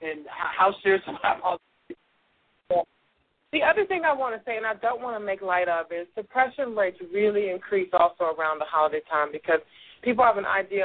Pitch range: 175-215 Hz